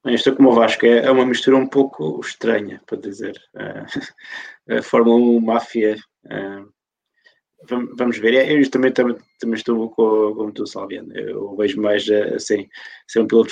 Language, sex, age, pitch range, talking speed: English, male, 20-39, 105-120 Hz, 170 wpm